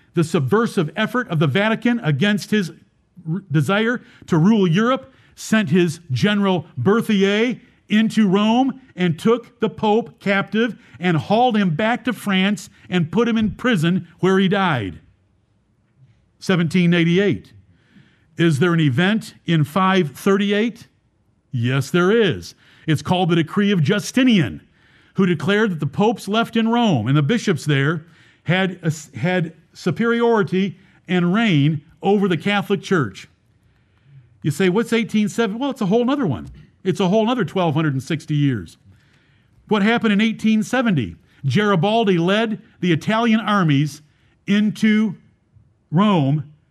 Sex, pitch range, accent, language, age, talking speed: male, 155-210 Hz, American, English, 50-69, 130 wpm